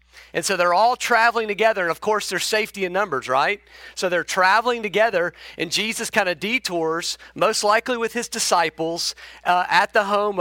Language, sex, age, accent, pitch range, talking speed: English, male, 40-59, American, 165-220 Hz, 185 wpm